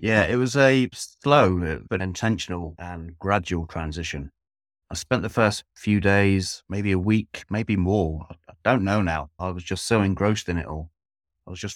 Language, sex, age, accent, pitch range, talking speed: English, male, 30-49, British, 80-95 Hz, 185 wpm